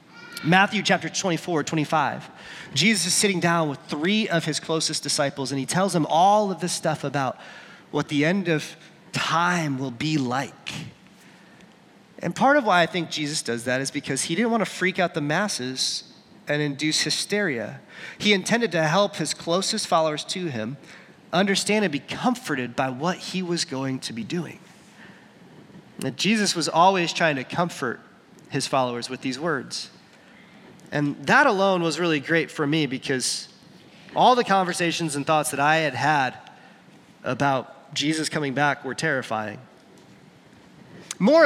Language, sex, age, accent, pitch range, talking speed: English, male, 30-49, American, 145-200 Hz, 160 wpm